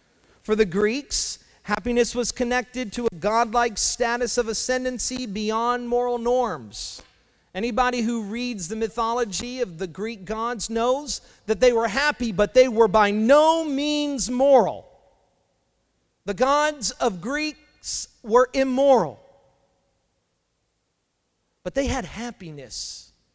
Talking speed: 120 wpm